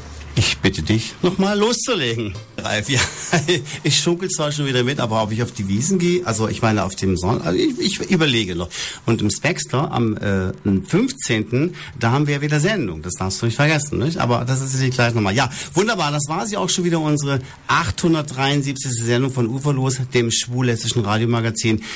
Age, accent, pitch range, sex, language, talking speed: 50-69, German, 100-145 Hz, male, German, 190 wpm